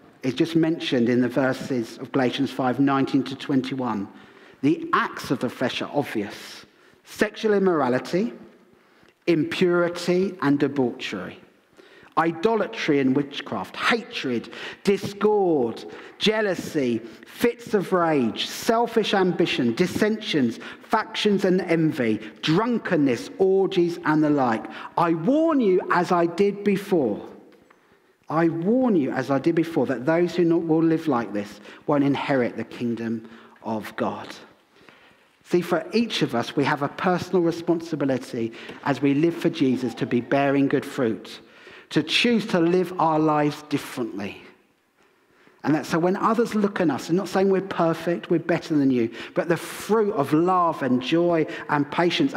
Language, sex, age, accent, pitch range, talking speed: English, male, 50-69, British, 140-190 Hz, 140 wpm